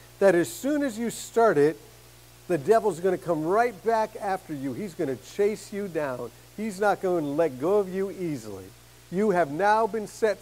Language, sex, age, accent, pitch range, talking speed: English, male, 50-69, American, 160-205 Hz, 205 wpm